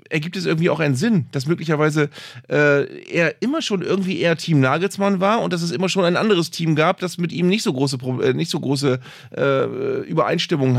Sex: male